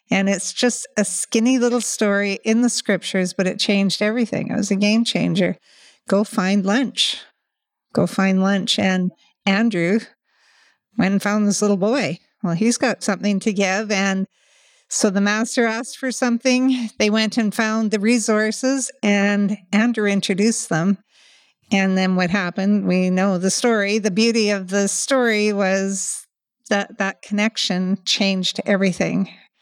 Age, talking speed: 50-69, 150 wpm